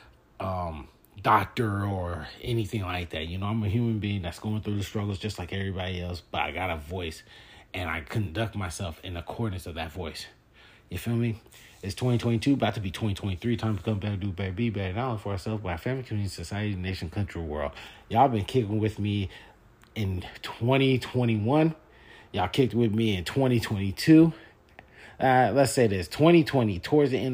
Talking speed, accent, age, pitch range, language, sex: 180 wpm, American, 30-49, 95-120 Hz, English, male